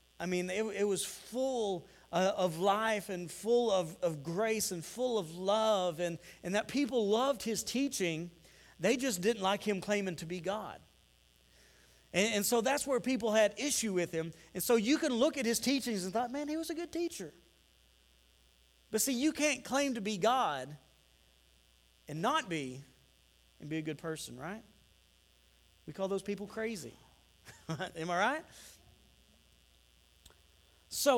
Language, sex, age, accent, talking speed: English, male, 40-59, American, 165 wpm